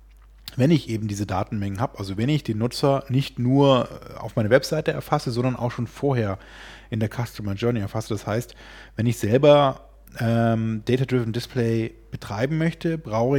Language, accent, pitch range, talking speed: German, German, 110-130 Hz, 165 wpm